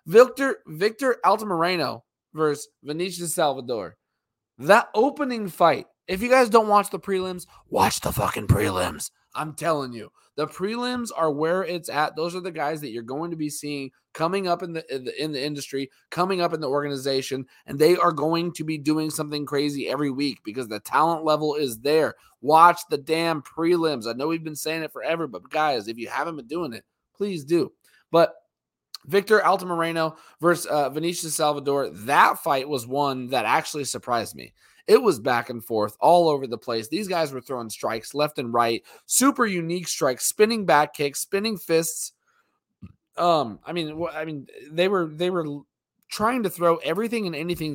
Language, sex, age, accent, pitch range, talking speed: English, male, 20-39, American, 140-180 Hz, 185 wpm